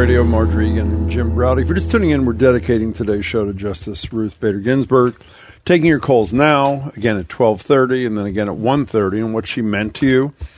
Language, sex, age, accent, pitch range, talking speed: English, male, 50-69, American, 100-130 Hz, 215 wpm